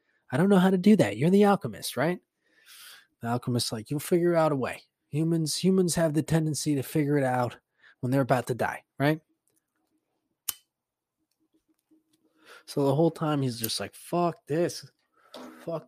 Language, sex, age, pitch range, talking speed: English, male, 20-39, 130-170 Hz, 165 wpm